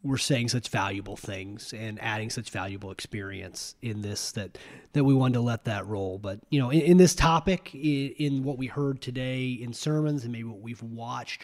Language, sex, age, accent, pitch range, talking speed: English, male, 30-49, American, 115-140 Hz, 210 wpm